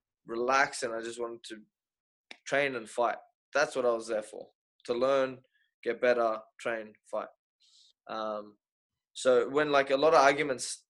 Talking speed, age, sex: 155 wpm, 20-39, male